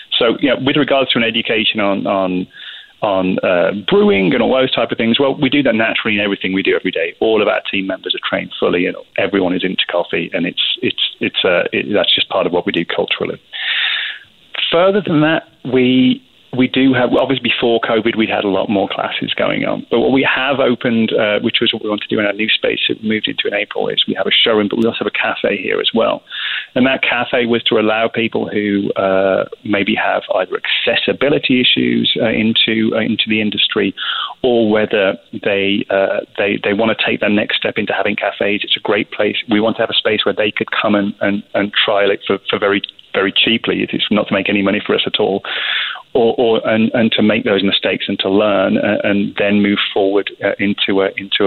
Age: 30-49